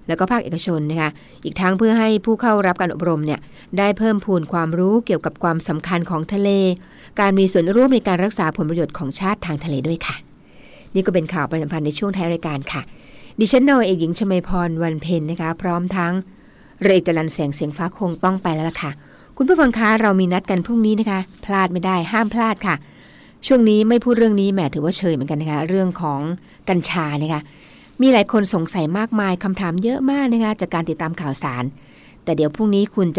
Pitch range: 160-205 Hz